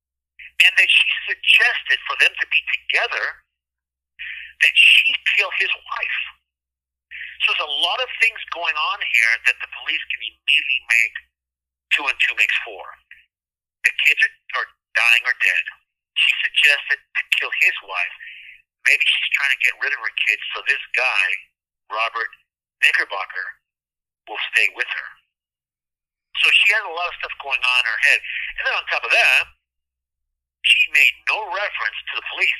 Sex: male